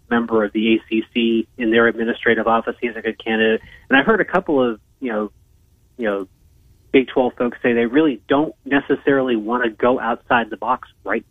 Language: English